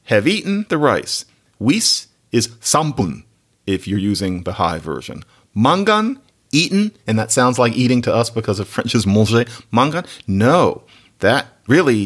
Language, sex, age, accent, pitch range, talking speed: English, male, 50-69, American, 105-150 Hz, 150 wpm